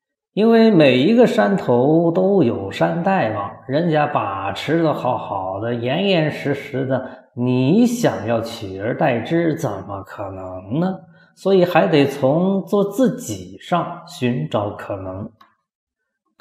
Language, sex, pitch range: Chinese, male, 130-185 Hz